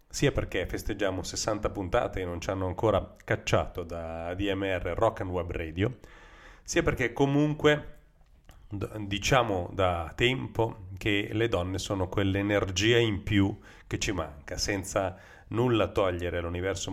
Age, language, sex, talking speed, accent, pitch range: 40-59, Italian, male, 130 wpm, native, 90-115 Hz